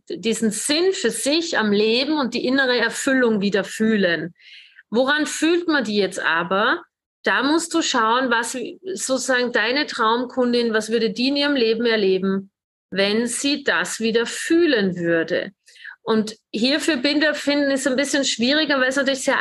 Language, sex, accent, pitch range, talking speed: German, female, German, 215-255 Hz, 160 wpm